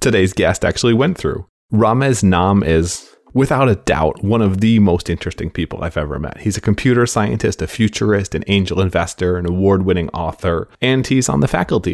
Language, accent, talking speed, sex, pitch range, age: English, American, 185 wpm, male, 90-110 Hz, 30-49